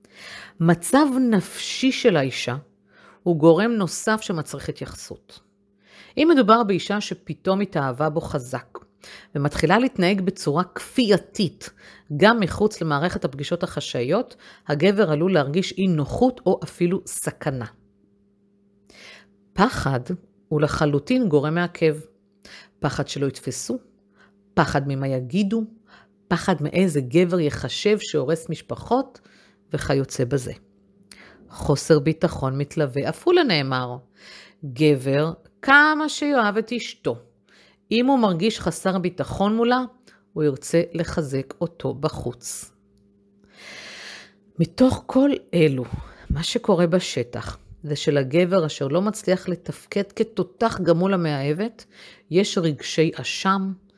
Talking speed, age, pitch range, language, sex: 100 wpm, 50-69, 140-200 Hz, Hebrew, female